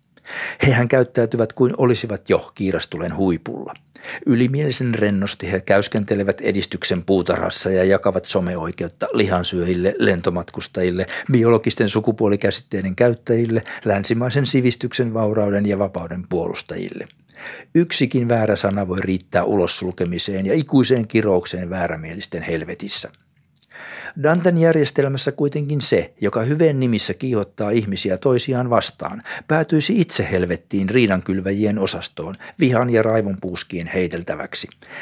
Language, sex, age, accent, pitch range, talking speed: Finnish, male, 60-79, native, 95-125 Hz, 100 wpm